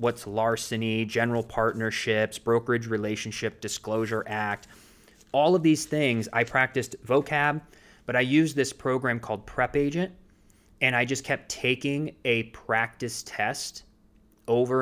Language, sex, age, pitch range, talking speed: English, male, 20-39, 105-130 Hz, 130 wpm